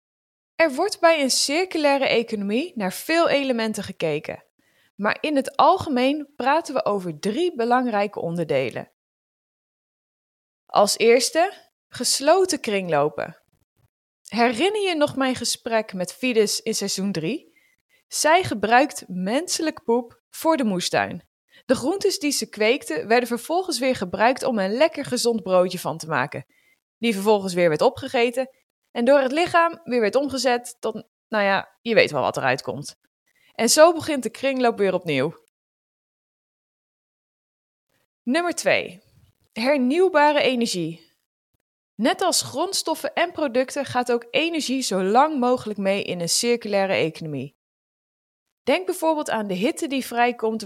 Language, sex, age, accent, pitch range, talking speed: Dutch, female, 20-39, Dutch, 200-300 Hz, 135 wpm